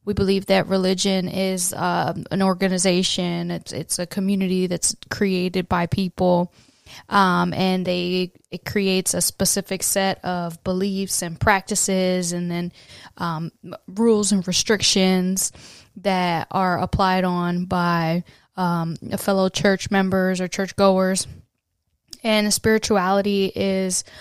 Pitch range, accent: 175-200 Hz, American